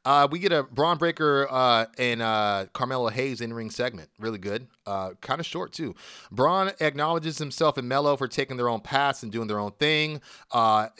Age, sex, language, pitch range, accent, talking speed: 30-49, male, English, 115-135 Hz, American, 195 wpm